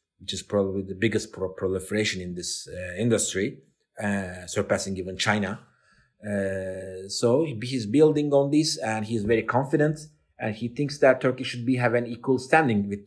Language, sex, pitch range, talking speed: English, male, 110-140 Hz, 165 wpm